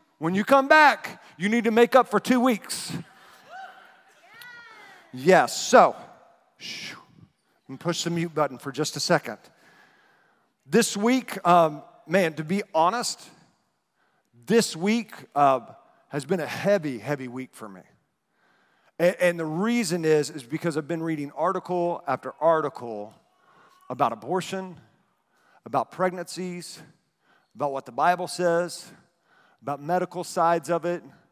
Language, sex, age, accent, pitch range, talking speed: English, male, 40-59, American, 145-185 Hz, 135 wpm